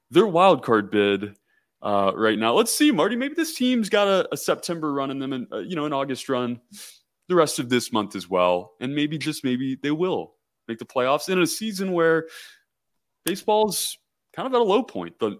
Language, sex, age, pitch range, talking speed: English, male, 20-39, 110-170 Hz, 215 wpm